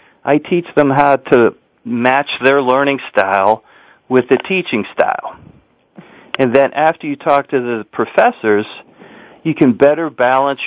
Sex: male